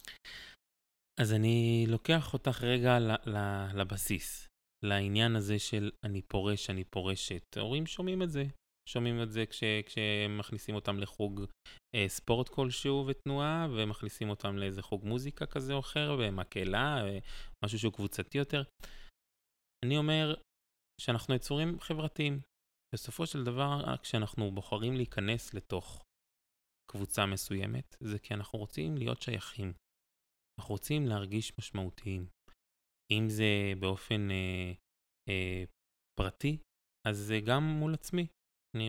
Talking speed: 120 wpm